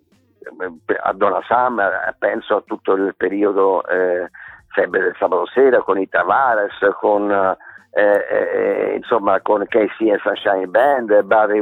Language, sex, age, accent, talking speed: Italian, male, 50-69, native, 110 wpm